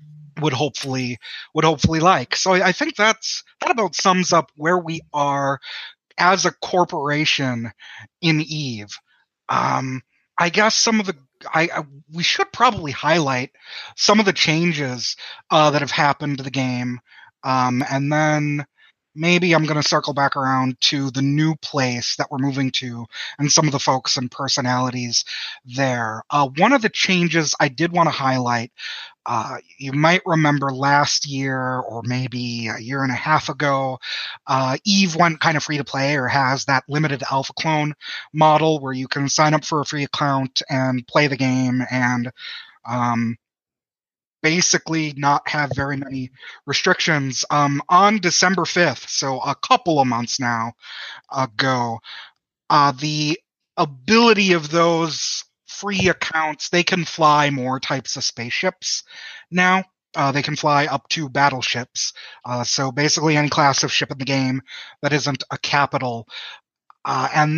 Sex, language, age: male, English, 30-49